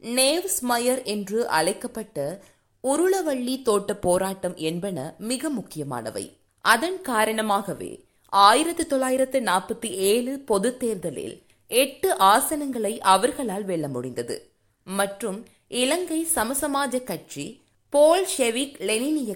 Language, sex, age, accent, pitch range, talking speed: Tamil, female, 20-39, native, 200-275 Hz, 80 wpm